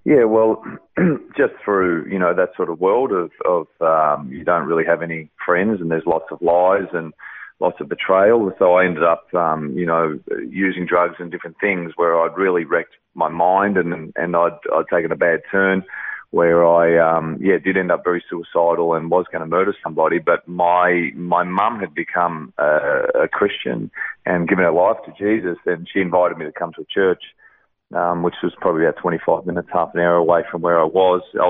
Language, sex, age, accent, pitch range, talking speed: English, male, 30-49, Australian, 85-90 Hz, 210 wpm